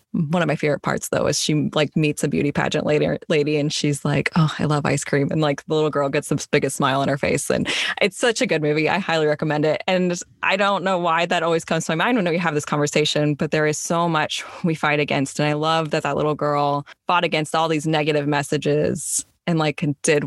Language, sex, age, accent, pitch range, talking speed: English, female, 20-39, American, 145-170 Hz, 250 wpm